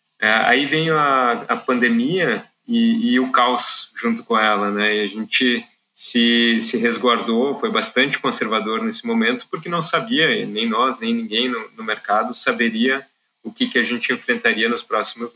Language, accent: Portuguese, Brazilian